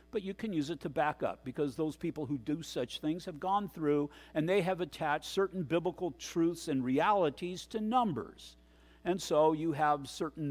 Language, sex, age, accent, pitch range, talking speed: English, male, 50-69, American, 135-170 Hz, 195 wpm